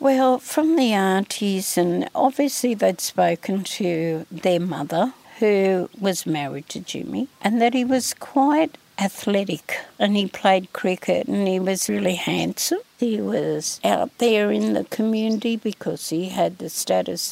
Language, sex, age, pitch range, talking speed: English, female, 60-79, 185-245 Hz, 150 wpm